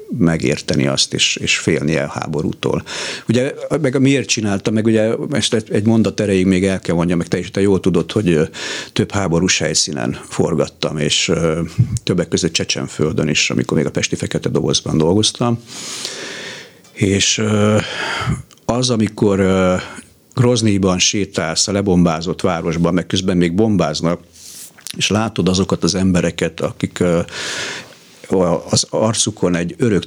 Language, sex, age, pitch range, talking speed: Hungarian, male, 50-69, 85-110 Hz, 140 wpm